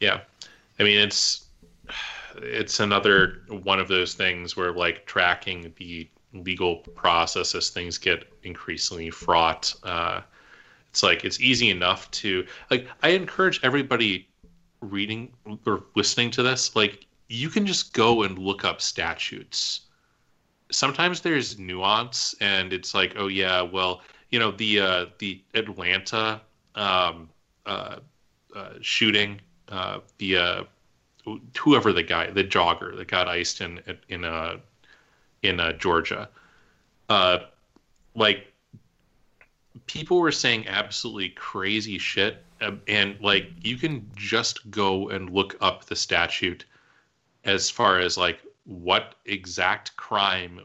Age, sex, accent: 30-49, male, American